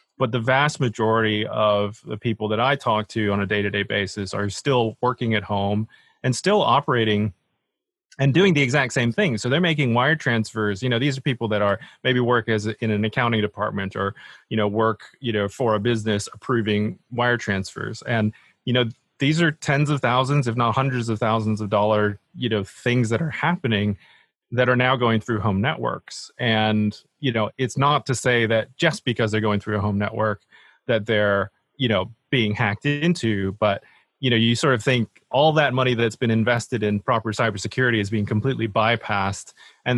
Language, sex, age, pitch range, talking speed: English, male, 30-49, 105-130 Hz, 200 wpm